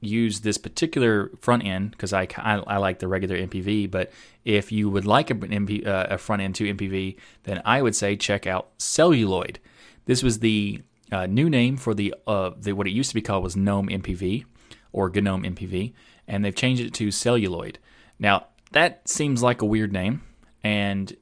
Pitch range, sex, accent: 95-115 Hz, male, American